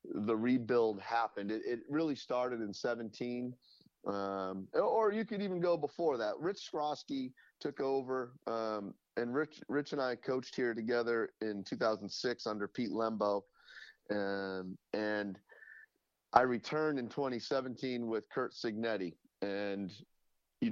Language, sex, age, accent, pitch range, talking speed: English, male, 30-49, American, 100-125 Hz, 135 wpm